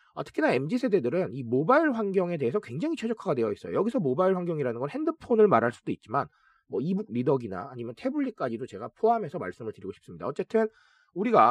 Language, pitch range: Korean, 140-230 Hz